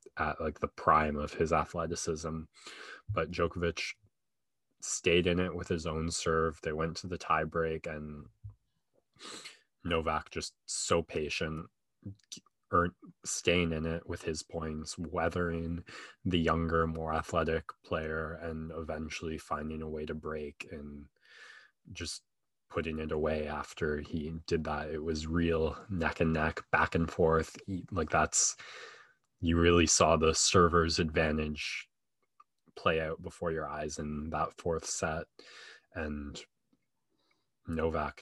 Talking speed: 135 wpm